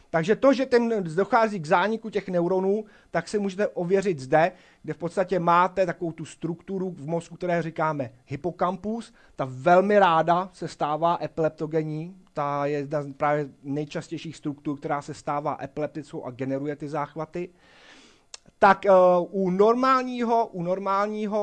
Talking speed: 145 wpm